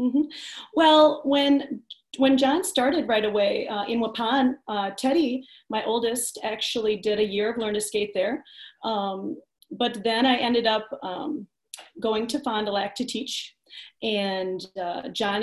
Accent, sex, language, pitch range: American, female, English, 215-255 Hz